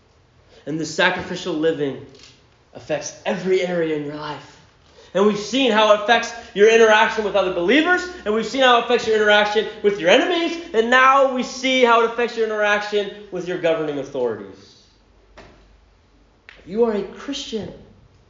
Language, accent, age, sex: English, American, 30-49, male